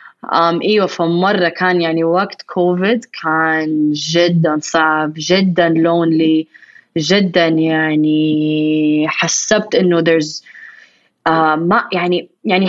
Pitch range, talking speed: 170-230 Hz, 100 wpm